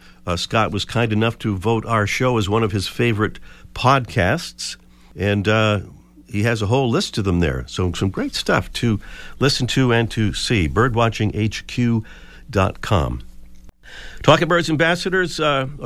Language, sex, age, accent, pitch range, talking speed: English, male, 50-69, American, 95-135 Hz, 150 wpm